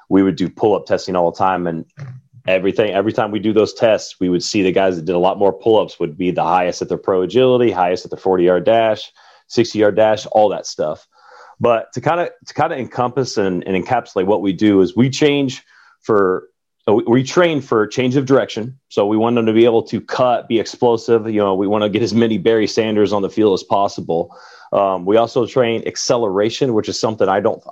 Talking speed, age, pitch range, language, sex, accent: 225 wpm, 30-49, 90-125 Hz, English, male, American